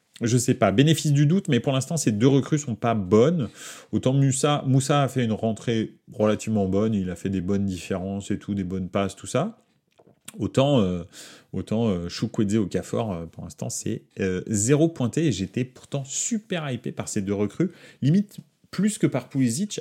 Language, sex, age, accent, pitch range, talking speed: French, male, 30-49, French, 95-130 Hz, 190 wpm